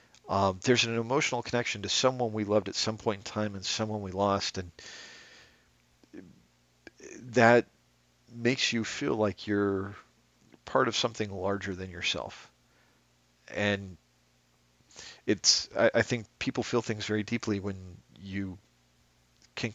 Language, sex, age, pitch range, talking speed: English, male, 40-59, 90-110 Hz, 135 wpm